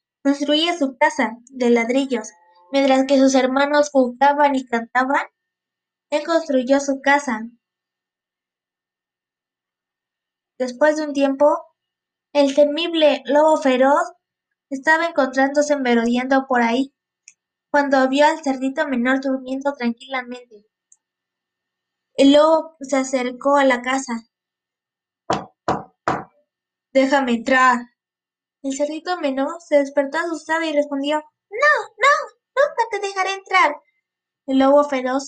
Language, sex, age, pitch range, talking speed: Spanish, female, 20-39, 255-295 Hz, 105 wpm